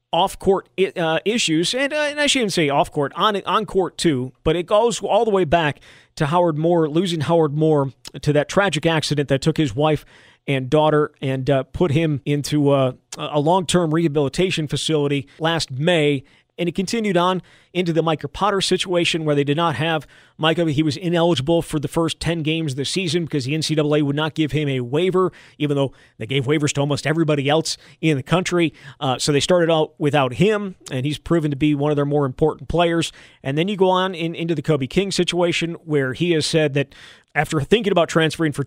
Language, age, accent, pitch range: English, 40-59, American, 145-170 Hz